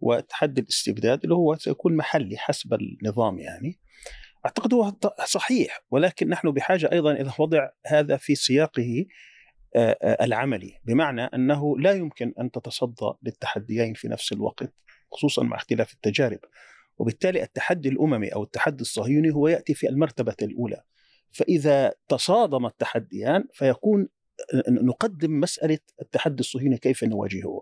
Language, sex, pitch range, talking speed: Arabic, male, 130-180 Hz, 125 wpm